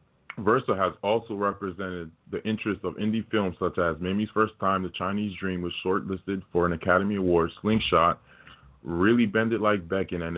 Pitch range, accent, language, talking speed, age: 90-105 Hz, American, English, 175 wpm, 20-39